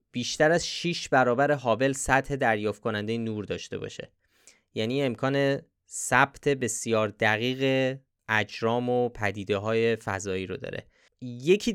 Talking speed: 125 wpm